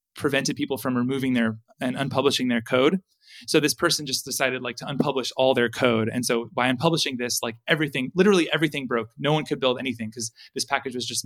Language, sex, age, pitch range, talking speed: English, male, 20-39, 125-165 Hz, 215 wpm